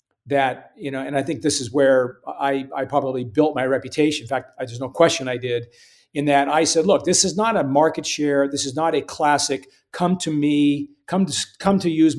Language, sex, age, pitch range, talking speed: English, male, 50-69, 130-160 Hz, 230 wpm